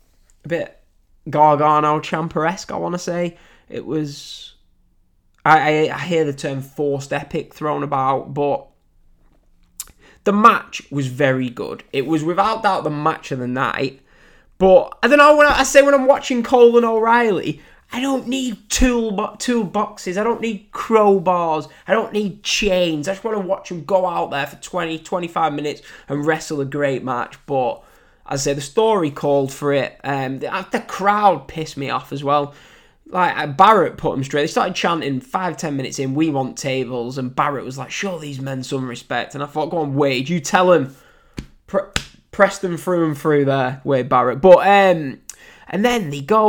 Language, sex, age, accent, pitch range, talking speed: English, male, 10-29, British, 140-200 Hz, 185 wpm